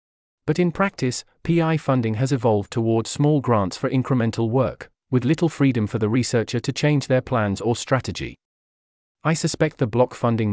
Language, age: English, 40-59